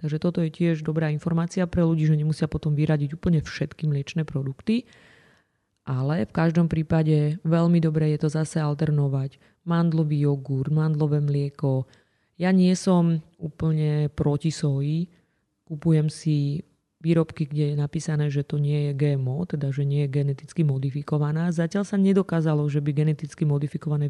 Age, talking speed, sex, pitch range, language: 30-49, 150 wpm, female, 145-165 Hz, Slovak